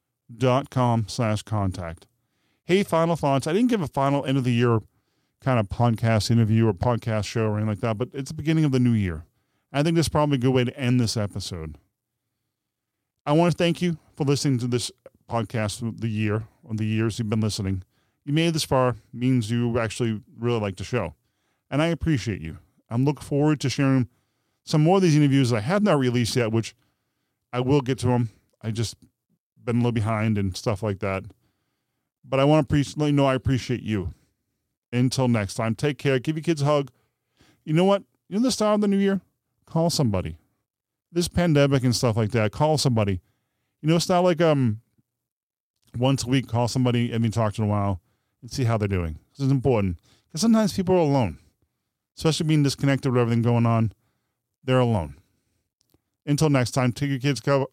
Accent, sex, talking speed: American, male, 205 wpm